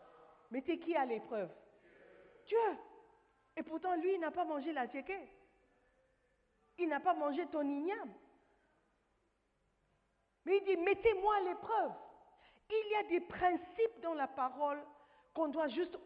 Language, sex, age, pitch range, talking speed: French, female, 50-69, 260-370 Hz, 140 wpm